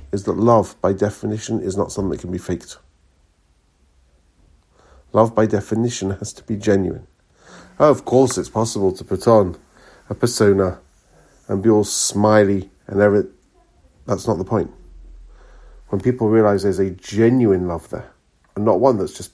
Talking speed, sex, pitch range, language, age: 160 wpm, male, 85-110 Hz, English, 40-59